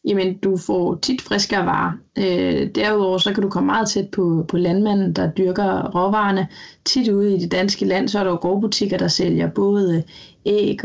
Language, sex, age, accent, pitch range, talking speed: Danish, female, 20-39, native, 175-205 Hz, 195 wpm